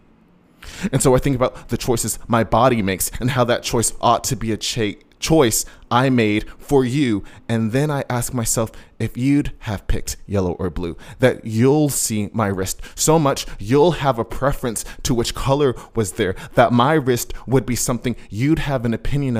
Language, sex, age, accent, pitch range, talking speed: English, male, 20-39, American, 95-125 Hz, 190 wpm